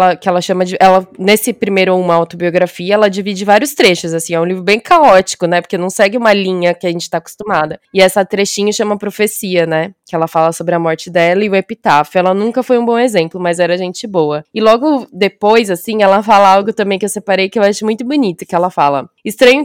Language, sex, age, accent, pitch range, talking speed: Portuguese, female, 20-39, Brazilian, 180-220 Hz, 230 wpm